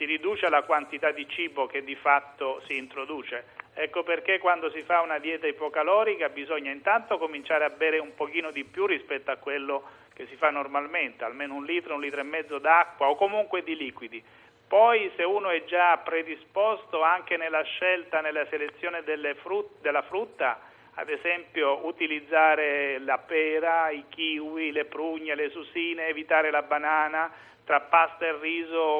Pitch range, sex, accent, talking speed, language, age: 150-175 Hz, male, native, 165 wpm, Italian, 40-59